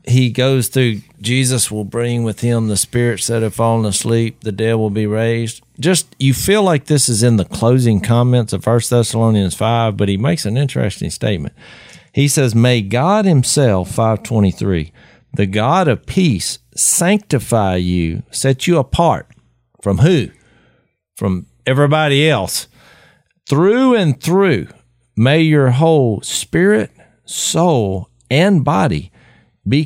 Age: 50-69